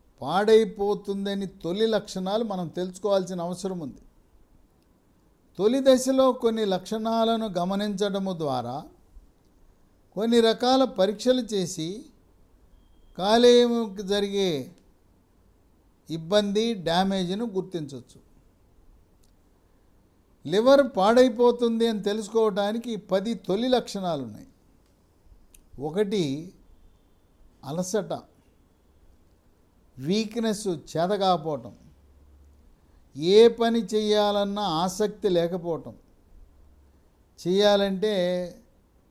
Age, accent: 60-79, Indian